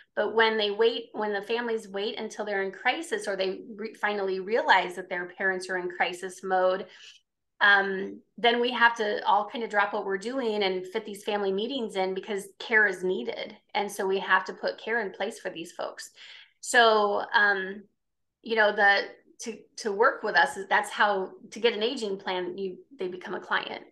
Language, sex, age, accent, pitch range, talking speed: English, female, 20-39, American, 190-225 Hz, 205 wpm